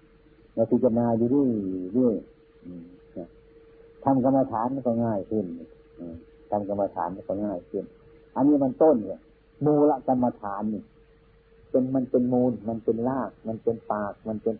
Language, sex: Thai, male